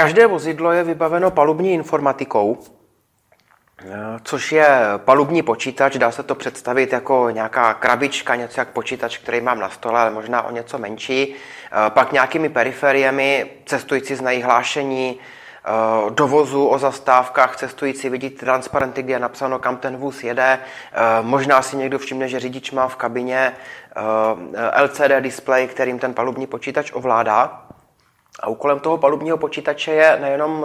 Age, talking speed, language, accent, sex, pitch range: 30-49, 140 wpm, Czech, native, male, 130-150 Hz